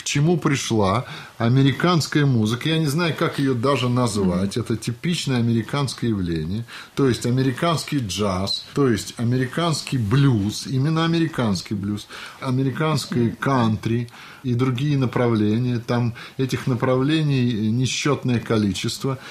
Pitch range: 115-150 Hz